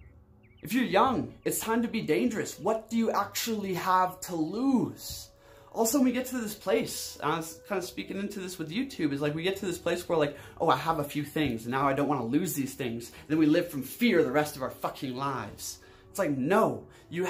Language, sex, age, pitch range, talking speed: English, male, 20-39, 120-190 Hz, 250 wpm